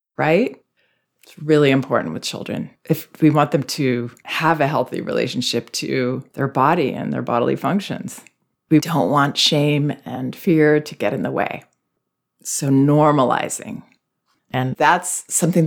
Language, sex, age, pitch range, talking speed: English, female, 30-49, 130-165 Hz, 145 wpm